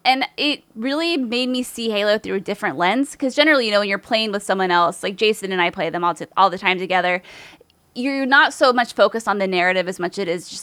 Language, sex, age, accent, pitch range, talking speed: English, female, 20-39, American, 180-220 Hz, 260 wpm